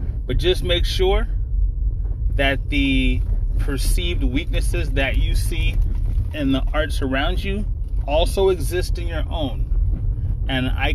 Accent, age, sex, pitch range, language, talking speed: American, 30-49, male, 90-125 Hz, English, 125 wpm